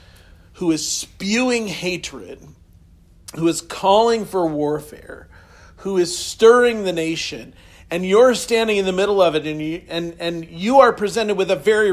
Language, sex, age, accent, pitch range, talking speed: English, male, 40-59, American, 145-200 Hz, 150 wpm